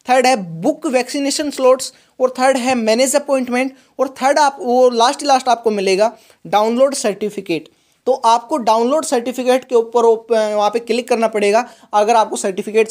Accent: native